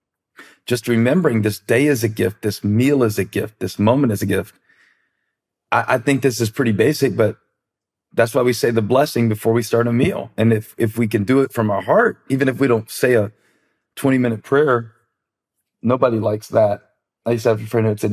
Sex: male